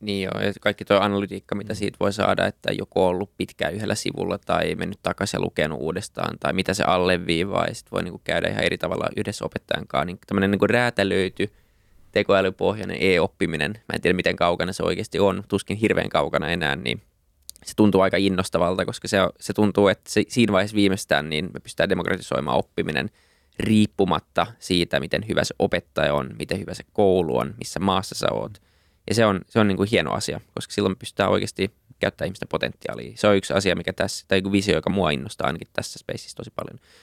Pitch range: 90-105 Hz